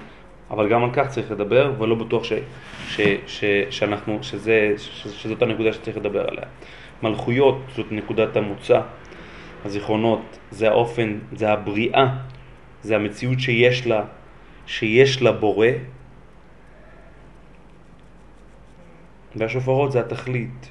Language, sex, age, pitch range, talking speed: Hebrew, male, 30-49, 110-125 Hz, 110 wpm